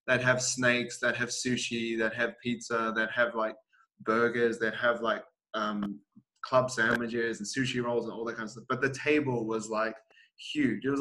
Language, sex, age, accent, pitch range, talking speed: English, male, 20-39, Australian, 110-130 Hz, 195 wpm